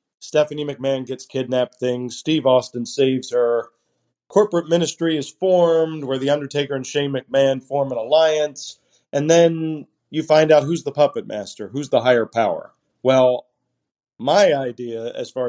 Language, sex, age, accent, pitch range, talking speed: English, male, 40-59, American, 125-150 Hz, 155 wpm